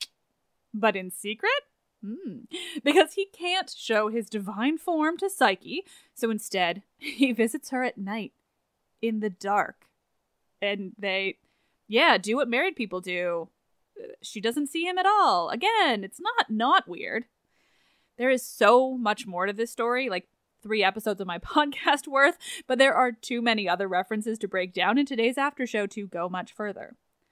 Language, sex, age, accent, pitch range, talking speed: English, female, 10-29, American, 200-290 Hz, 165 wpm